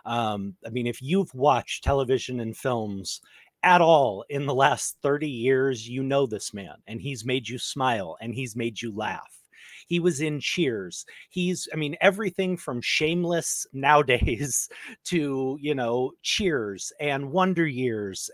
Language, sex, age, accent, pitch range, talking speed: English, male, 30-49, American, 120-155 Hz, 155 wpm